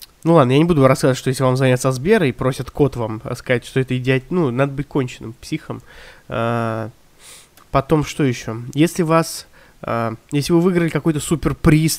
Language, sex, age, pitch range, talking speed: Russian, male, 20-39, 130-170 Hz, 180 wpm